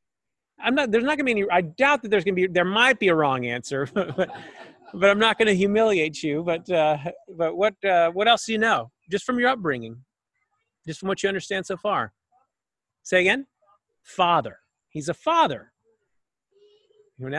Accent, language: American, English